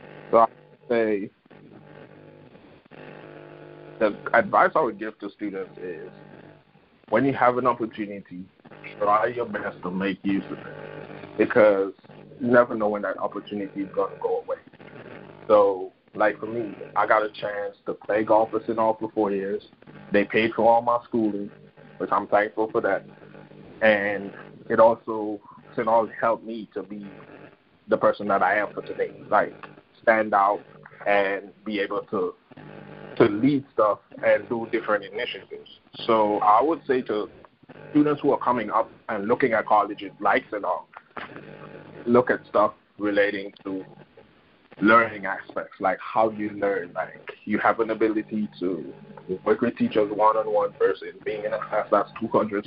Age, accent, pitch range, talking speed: 30-49, American, 100-135 Hz, 160 wpm